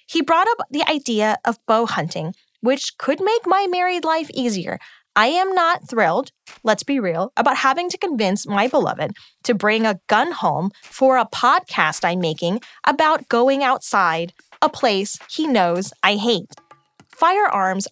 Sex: female